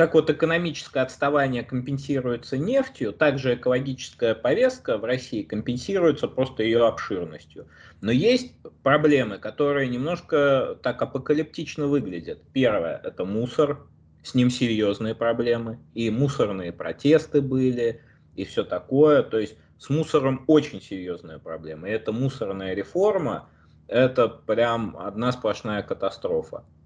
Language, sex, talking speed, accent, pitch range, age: Russian, male, 125 wpm, native, 95-145 Hz, 20-39